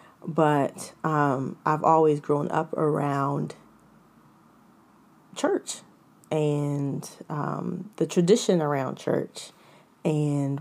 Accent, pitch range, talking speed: American, 145-170 Hz, 85 wpm